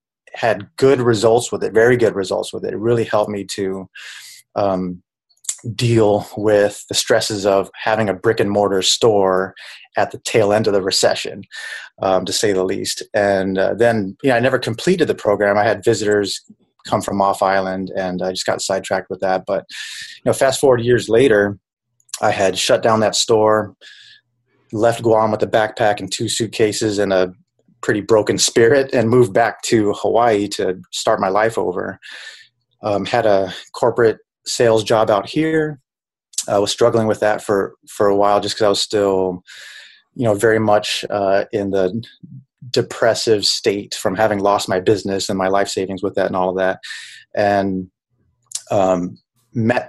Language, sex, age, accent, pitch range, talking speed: English, male, 30-49, American, 95-115 Hz, 180 wpm